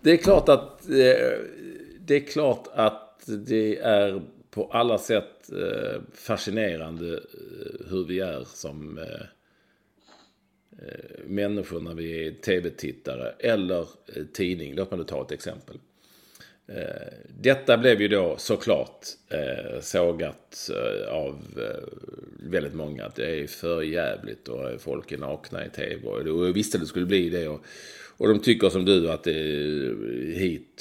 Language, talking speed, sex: English, 130 wpm, male